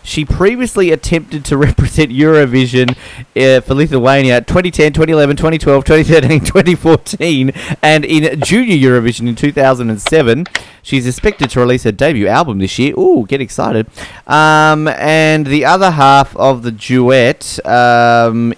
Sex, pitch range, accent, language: male, 115-145 Hz, Australian, English